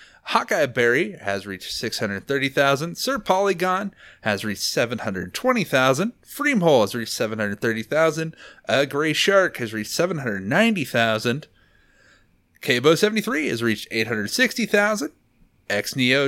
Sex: male